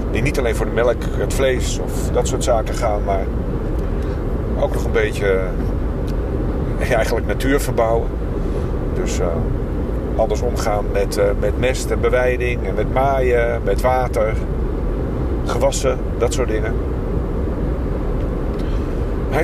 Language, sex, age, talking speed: Dutch, male, 50-69, 130 wpm